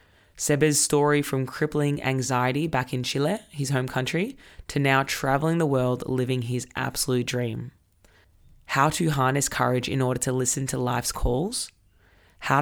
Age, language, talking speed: 20-39, English, 150 wpm